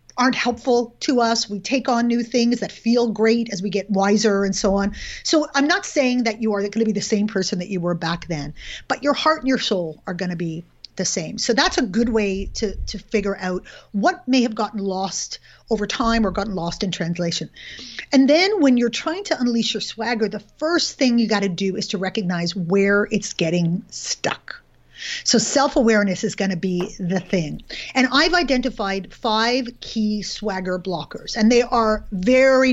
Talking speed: 205 wpm